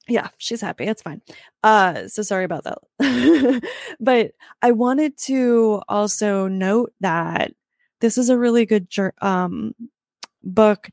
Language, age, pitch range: English, 20-39, 195-245 Hz